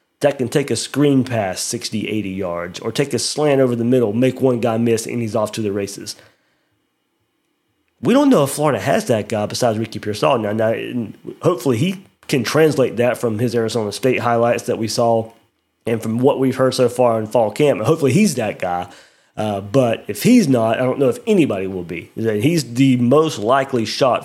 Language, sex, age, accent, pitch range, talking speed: English, male, 30-49, American, 110-135 Hz, 205 wpm